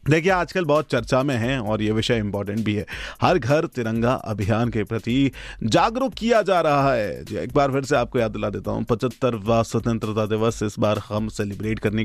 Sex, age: male, 30-49